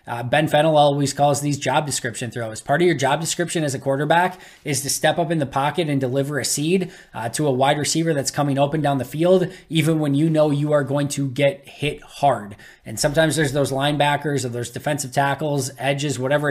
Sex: male